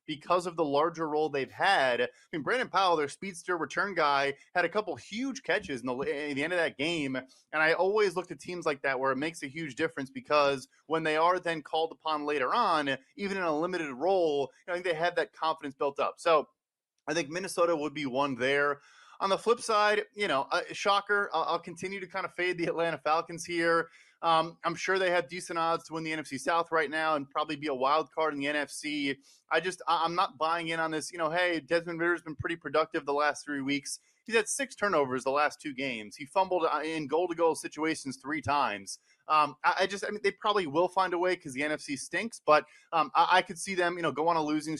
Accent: American